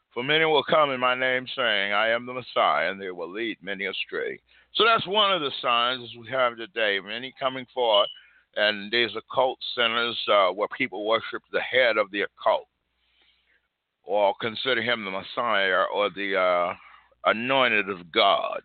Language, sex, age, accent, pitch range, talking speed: English, male, 60-79, American, 110-160 Hz, 175 wpm